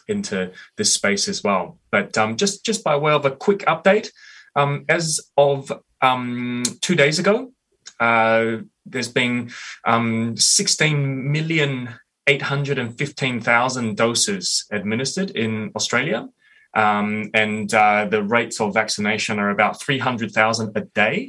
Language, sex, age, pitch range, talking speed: English, male, 20-39, 110-150 Hz, 120 wpm